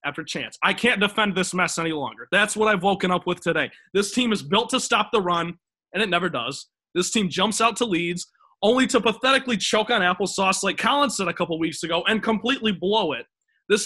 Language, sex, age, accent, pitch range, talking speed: English, male, 20-39, American, 175-235 Hz, 225 wpm